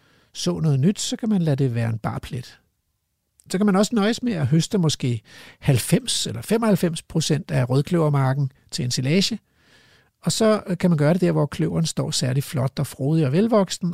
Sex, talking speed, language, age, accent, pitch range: male, 195 wpm, Danish, 60-79, native, 135-185 Hz